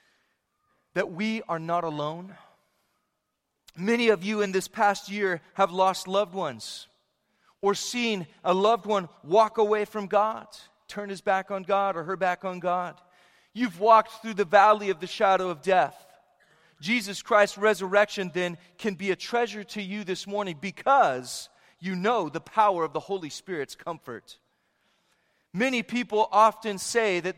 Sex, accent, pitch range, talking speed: male, American, 165-210 Hz, 160 wpm